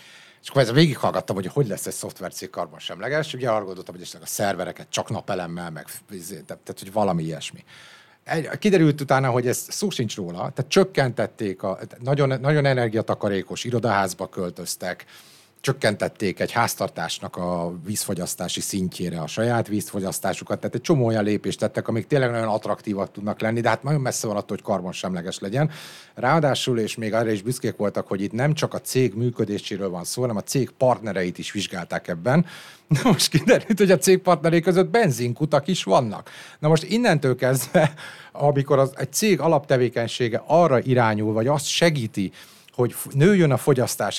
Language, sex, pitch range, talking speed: Hungarian, male, 110-155 Hz, 165 wpm